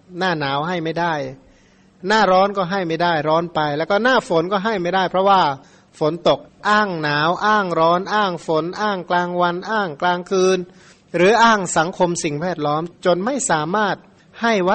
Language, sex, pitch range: Thai, male, 160-200 Hz